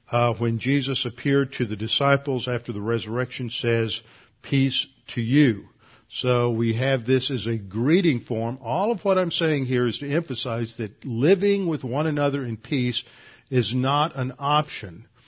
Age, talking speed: 50-69, 165 wpm